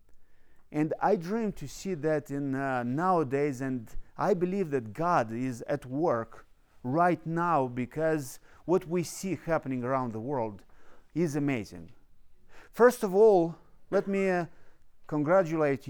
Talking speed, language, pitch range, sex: 135 wpm, English, 110-180 Hz, male